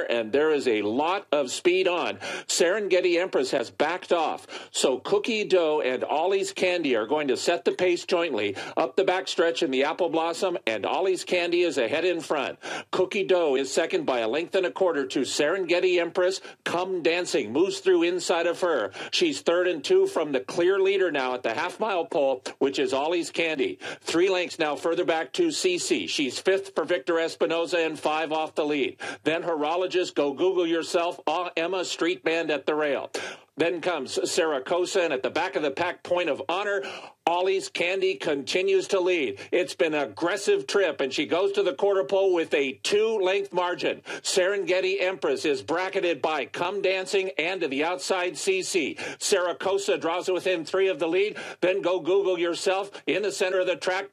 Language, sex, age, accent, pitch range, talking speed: English, male, 50-69, American, 175-215 Hz, 190 wpm